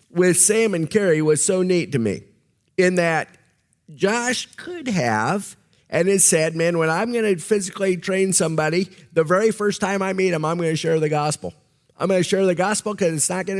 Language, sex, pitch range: English, male, 145-200 Hz